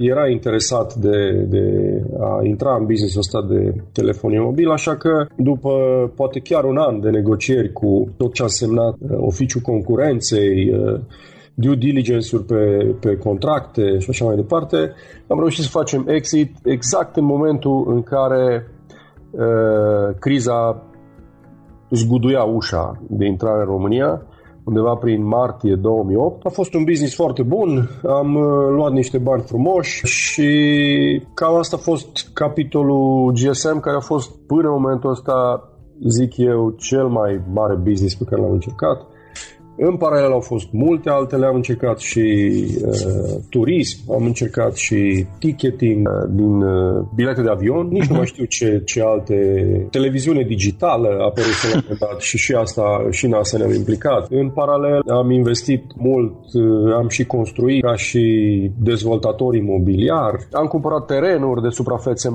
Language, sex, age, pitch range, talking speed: Romanian, male, 40-59, 110-135 Hz, 145 wpm